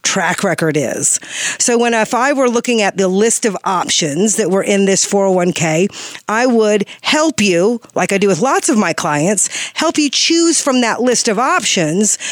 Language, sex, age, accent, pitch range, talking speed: English, female, 50-69, American, 195-265 Hz, 190 wpm